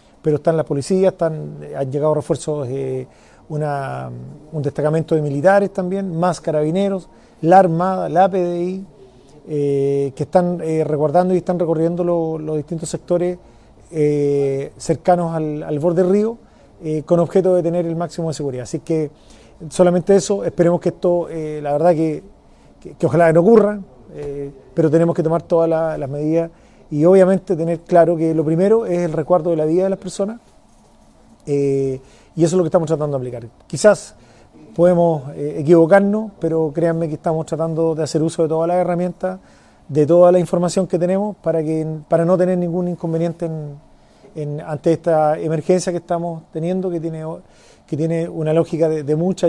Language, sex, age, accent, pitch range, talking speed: Spanish, male, 30-49, Argentinian, 150-175 Hz, 175 wpm